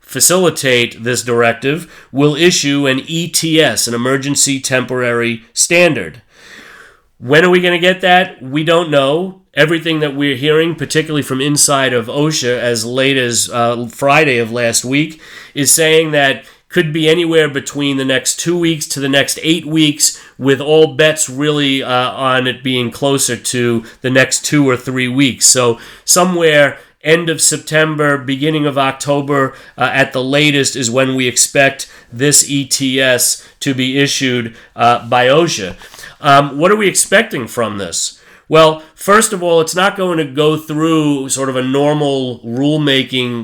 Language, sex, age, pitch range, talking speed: English, male, 30-49, 130-155 Hz, 160 wpm